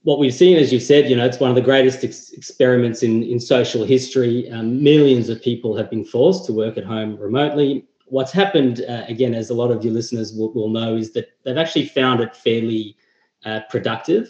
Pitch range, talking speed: 115-130 Hz, 220 wpm